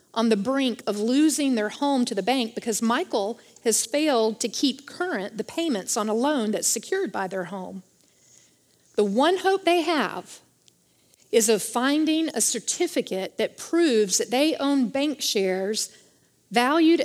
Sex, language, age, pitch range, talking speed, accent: female, English, 40-59, 220-300 Hz, 160 wpm, American